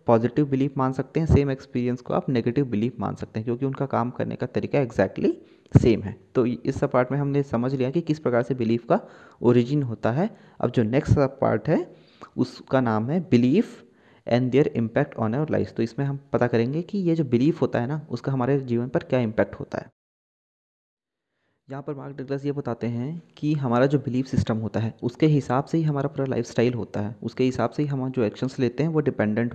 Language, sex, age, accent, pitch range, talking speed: Hindi, male, 20-39, native, 120-145 Hz, 220 wpm